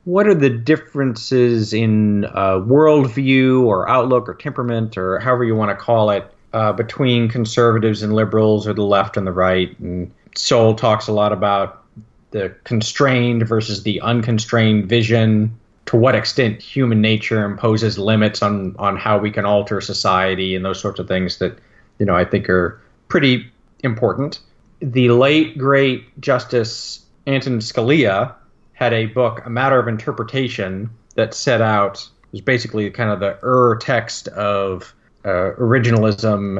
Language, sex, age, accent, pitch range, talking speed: English, male, 30-49, American, 105-130 Hz, 155 wpm